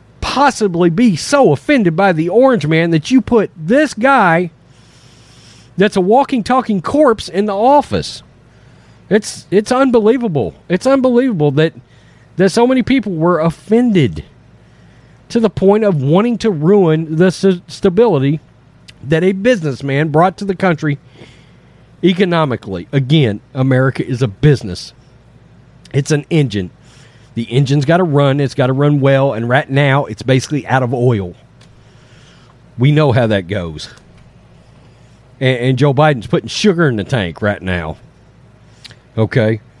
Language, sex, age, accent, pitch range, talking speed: English, male, 40-59, American, 130-195 Hz, 140 wpm